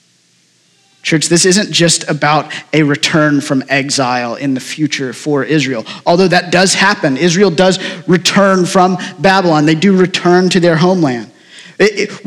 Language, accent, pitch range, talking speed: English, American, 180-220 Hz, 150 wpm